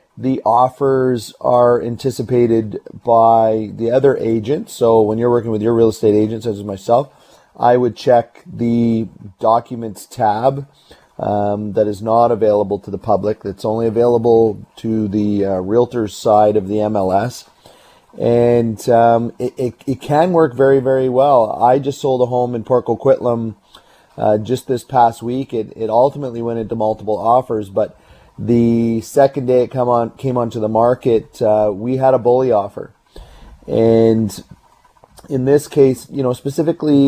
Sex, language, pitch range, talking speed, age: male, English, 110-130 Hz, 160 wpm, 30-49